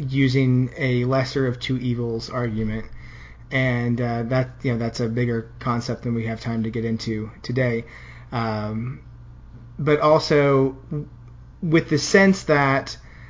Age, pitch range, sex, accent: 30-49, 120-145 Hz, male, American